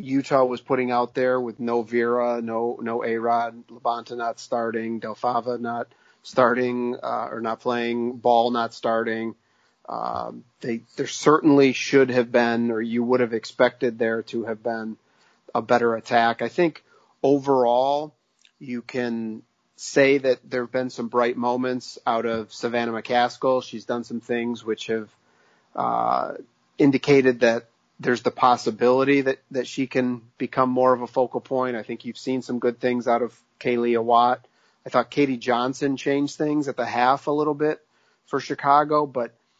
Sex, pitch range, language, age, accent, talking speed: male, 120-130 Hz, English, 40-59, American, 165 wpm